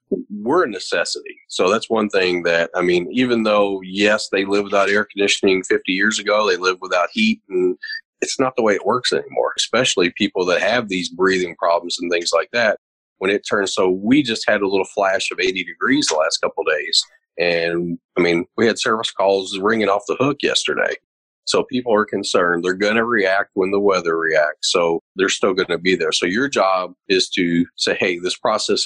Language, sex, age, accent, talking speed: English, male, 40-59, American, 210 wpm